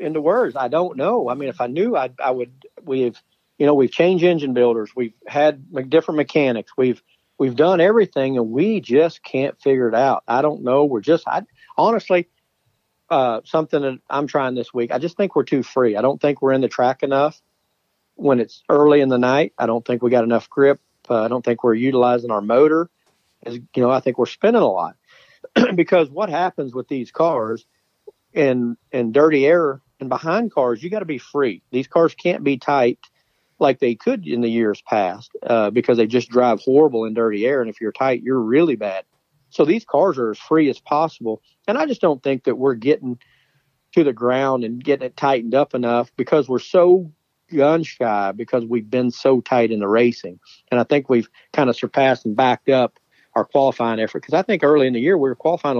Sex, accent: male, American